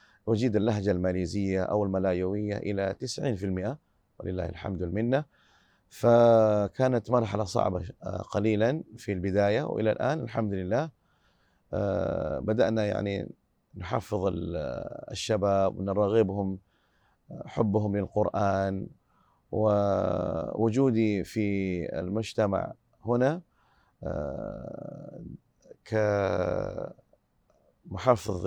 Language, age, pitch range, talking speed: Arabic, 30-49, 100-115 Hz, 70 wpm